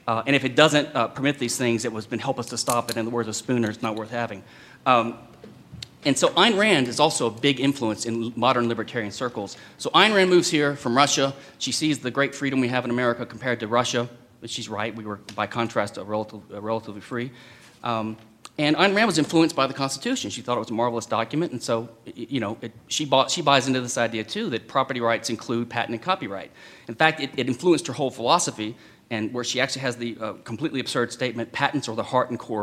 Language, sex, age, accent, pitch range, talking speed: English, male, 30-49, American, 115-135 Hz, 240 wpm